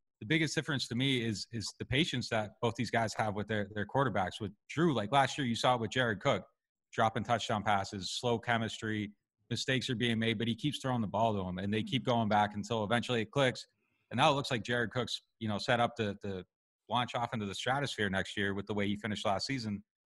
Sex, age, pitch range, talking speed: male, 30-49, 105-125 Hz, 240 wpm